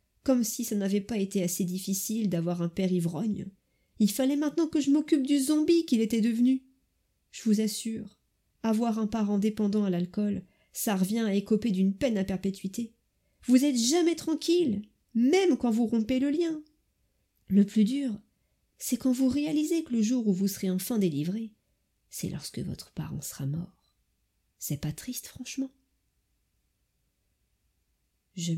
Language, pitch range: French, 170-225 Hz